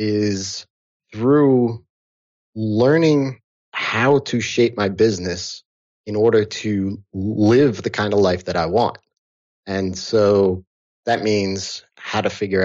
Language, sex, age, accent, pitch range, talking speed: English, male, 30-49, American, 95-120 Hz, 125 wpm